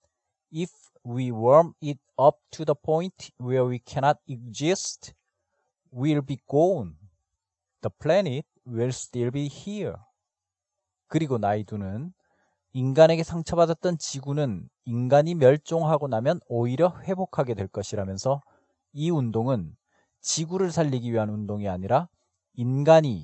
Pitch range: 115-160 Hz